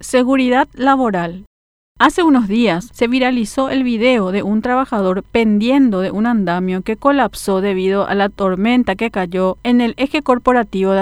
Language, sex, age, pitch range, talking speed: Spanish, female, 40-59, 200-255 Hz, 160 wpm